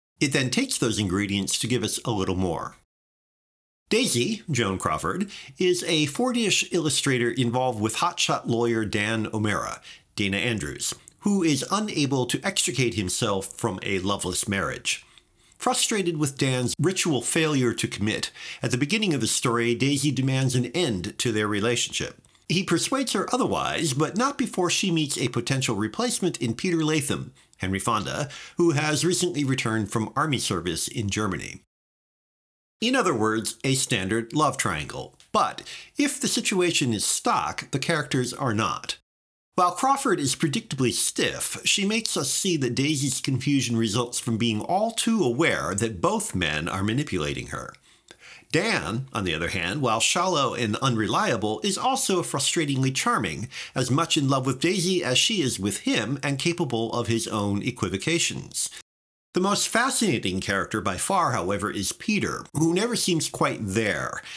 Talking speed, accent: 155 wpm, American